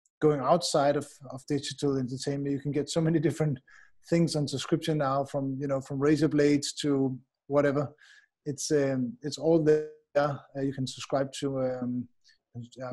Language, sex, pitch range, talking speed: Turkish, male, 135-160 Hz, 160 wpm